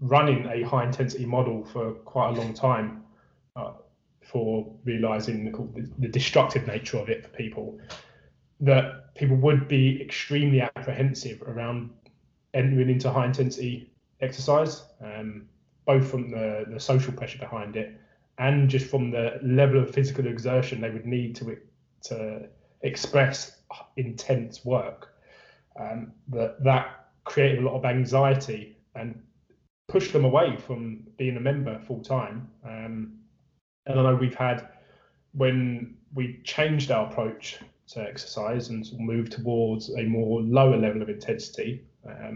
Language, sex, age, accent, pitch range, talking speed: English, male, 20-39, British, 115-135 Hz, 140 wpm